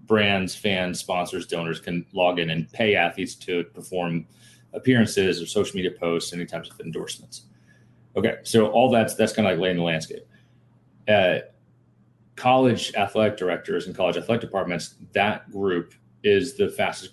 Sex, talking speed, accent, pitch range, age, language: male, 160 wpm, American, 90-115 Hz, 30-49, English